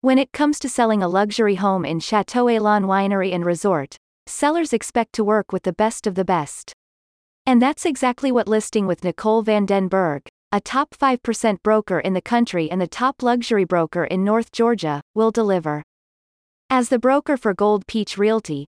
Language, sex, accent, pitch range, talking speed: English, female, American, 180-235 Hz, 185 wpm